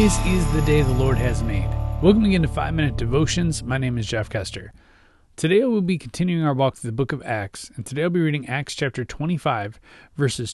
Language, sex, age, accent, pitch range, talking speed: English, male, 30-49, American, 115-160 Hz, 215 wpm